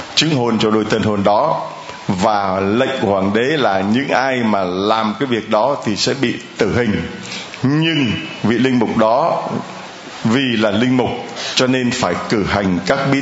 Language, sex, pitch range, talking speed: Vietnamese, male, 105-135 Hz, 185 wpm